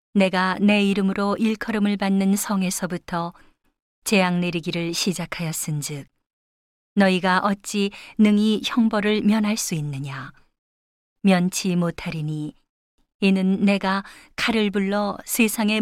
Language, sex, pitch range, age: Korean, female, 175-210 Hz, 40-59